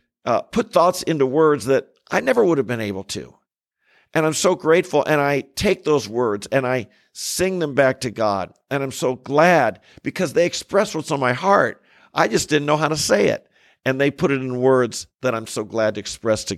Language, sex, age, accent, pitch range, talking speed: English, male, 50-69, American, 125-150 Hz, 220 wpm